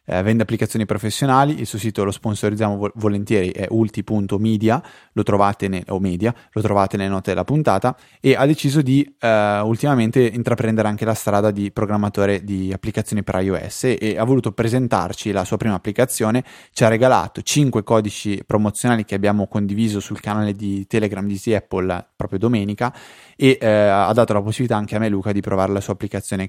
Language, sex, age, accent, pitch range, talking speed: Italian, male, 20-39, native, 105-125 Hz, 165 wpm